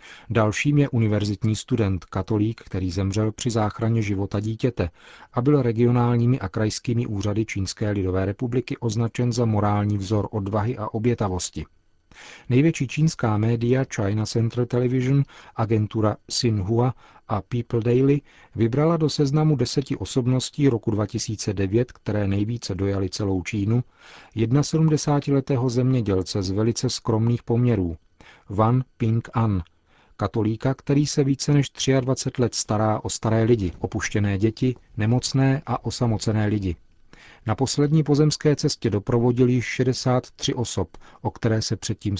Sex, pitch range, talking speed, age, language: male, 105-125 Hz, 125 wpm, 40-59, Czech